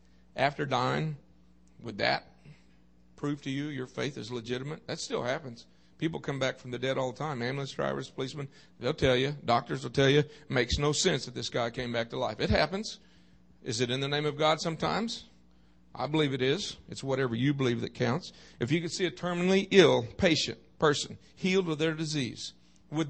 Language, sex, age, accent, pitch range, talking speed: English, male, 50-69, American, 120-160 Hz, 205 wpm